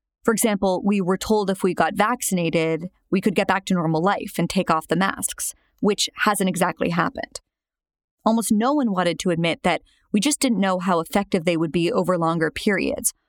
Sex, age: female, 30-49